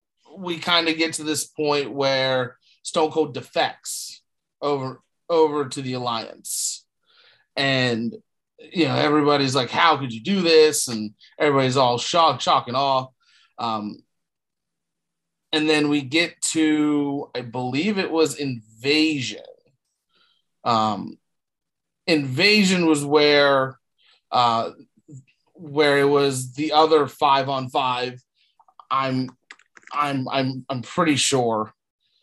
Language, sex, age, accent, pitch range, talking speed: English, male, 30-49, American, 130-155 Hz, 115 wpm